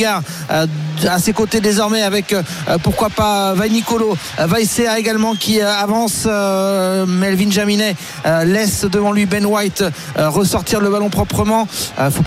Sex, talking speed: male, 115 wpm